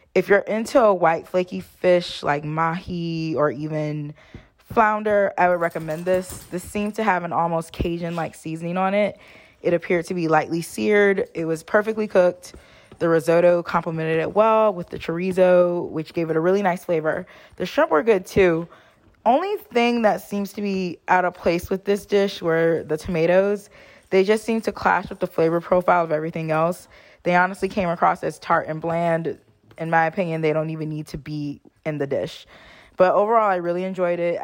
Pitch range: 155-185 Hz